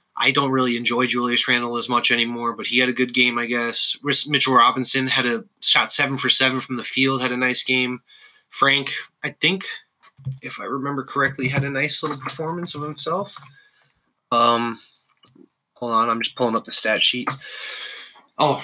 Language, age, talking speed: English, 20-39, 185 wpm